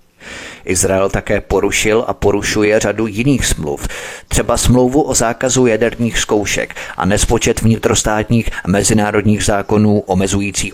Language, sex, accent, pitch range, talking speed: Czech, male, native, 100-120 Hz, 115 wpm